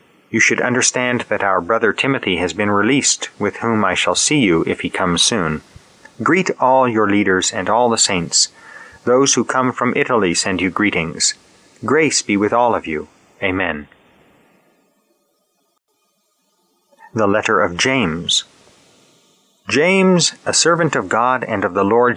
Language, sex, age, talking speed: English, male, 30-49, 150 wpm